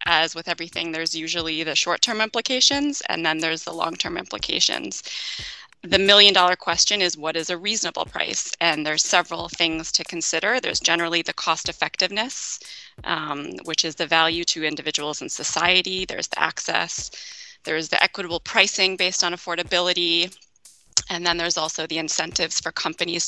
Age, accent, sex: 20-39, American, female